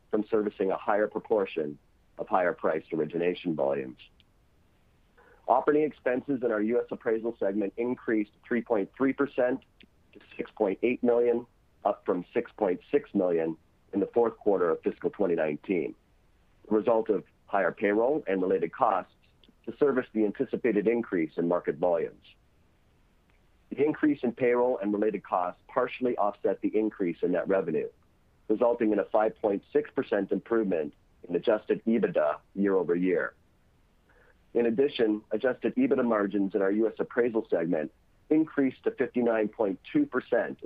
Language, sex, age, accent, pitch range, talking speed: English, male, 50-69, American, 105-140 Hz, 125 wpm